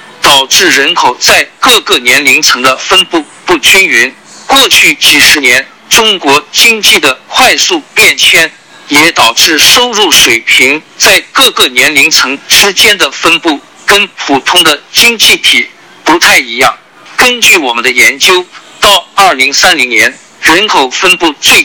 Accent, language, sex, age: native, Chinese, male, 50-69